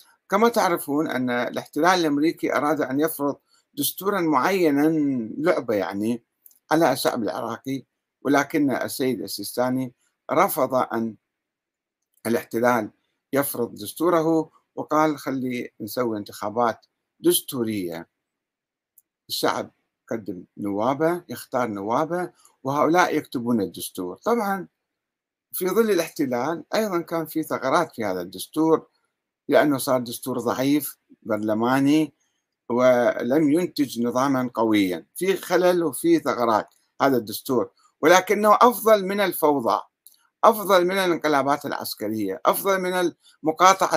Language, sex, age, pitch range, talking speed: Arabic, male, 60-79, 125-180 Hz, 100 wpm